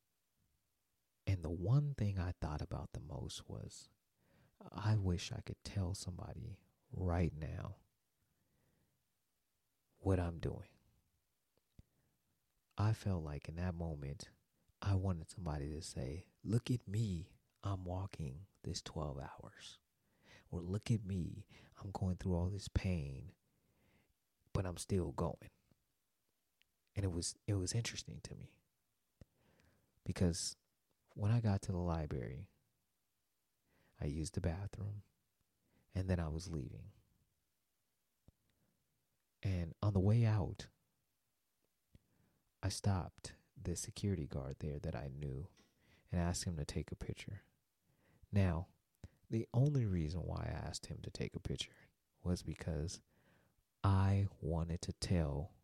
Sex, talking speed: male, 125 wpm